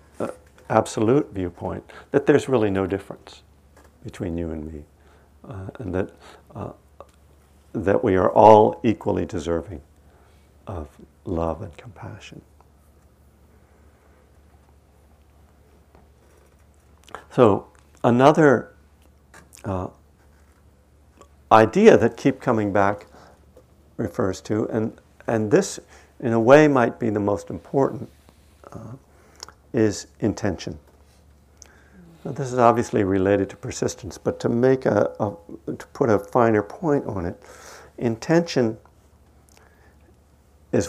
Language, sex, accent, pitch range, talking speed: English, male, American, 75-100 Hz, 105 wpm